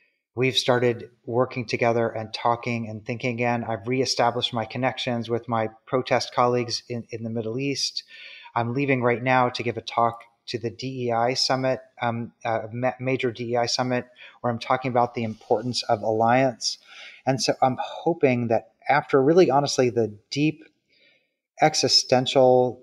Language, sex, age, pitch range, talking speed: English, male, 30-49, 115-130 Hz, 150 wpm